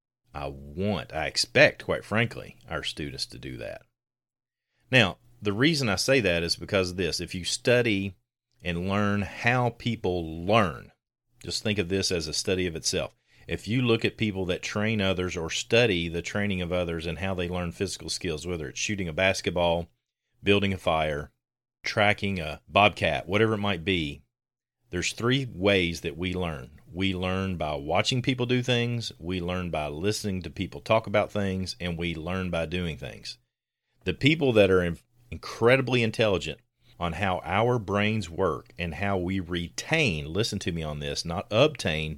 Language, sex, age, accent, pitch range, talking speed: English, male, 40-59, American, 85-115 Hz, 175 wpm